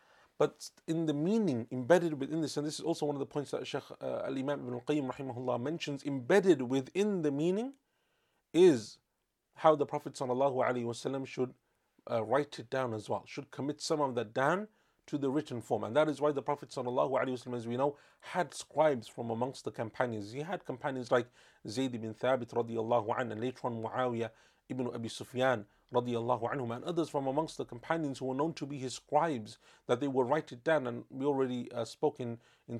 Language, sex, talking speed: English, male, 195 wpm